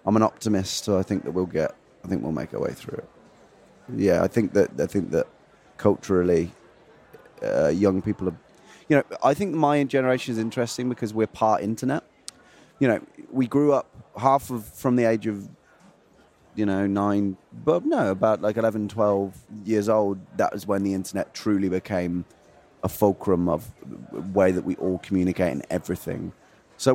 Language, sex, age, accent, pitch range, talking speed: Danish, male, 30-49, British, 100-125 Hz, 185 wpm